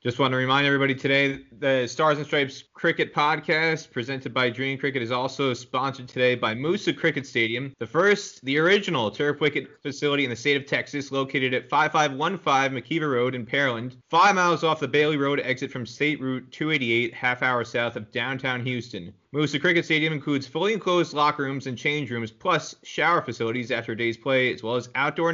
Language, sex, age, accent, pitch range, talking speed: English, male, 30-49, American, 125-150 Hz, 195 wpm